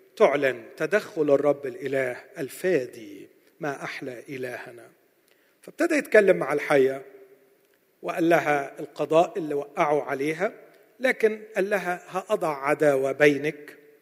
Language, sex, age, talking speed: Arabic, male, 50-69, 105 wpm